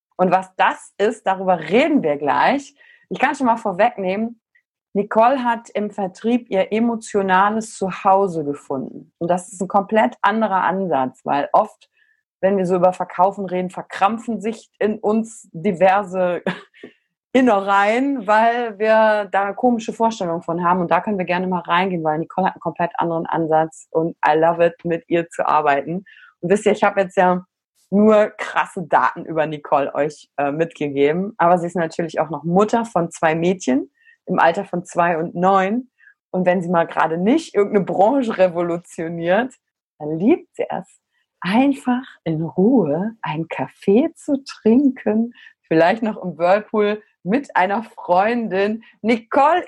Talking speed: 160 wpm